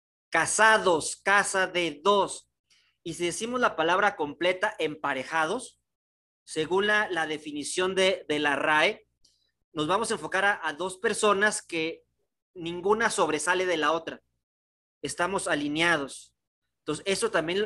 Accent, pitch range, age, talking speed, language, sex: Mexican, 150-205 Hz, 40-59, 130 wpm, Spanish, male